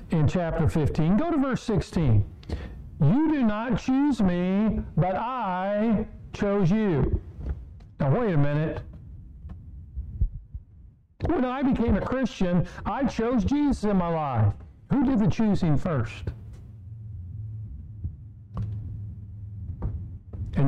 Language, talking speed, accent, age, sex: English, 105 wpm, American, 50-69, male